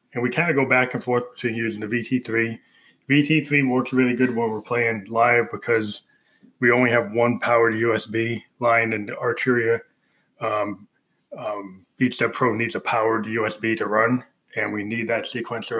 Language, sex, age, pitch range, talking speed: English, male, 20-39, 110-125 Hz, 170 wpm